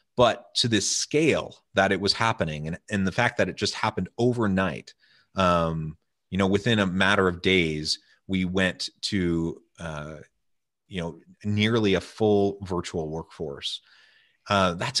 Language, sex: English, male